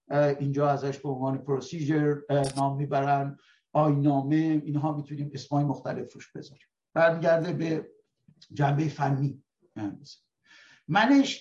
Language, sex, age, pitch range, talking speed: Persian, male, 60-79, 145-185 Hz, 100 wpm